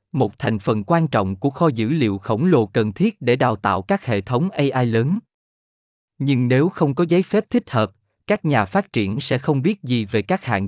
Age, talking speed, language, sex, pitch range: 20-39, 225 wpm, Vietnamese, male, 110-155 Hz